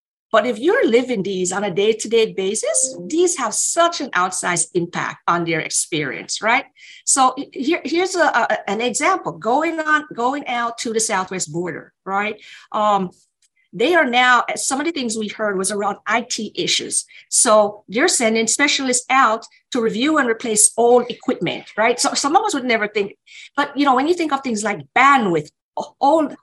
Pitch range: 210-285 Hz